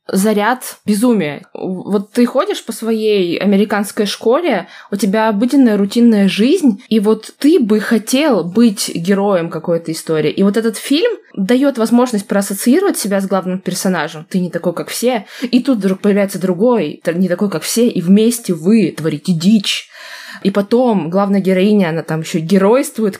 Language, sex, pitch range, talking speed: Russian, female, 180-225 Hz, 155 wpm